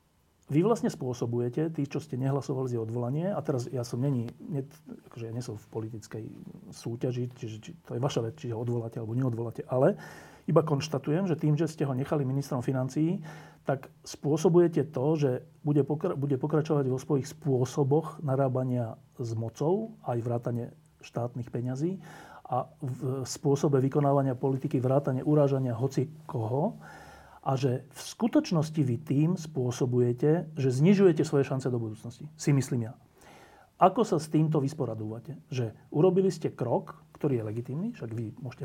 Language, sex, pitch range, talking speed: Slovak, male, 125-155 Hz, 155 wpm